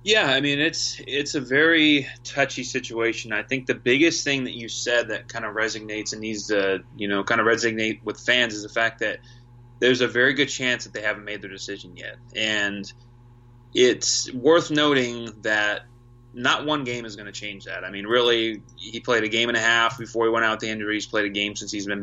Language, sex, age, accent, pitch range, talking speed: English, male, 20-39, American, 110-125 Hz, 225 wpm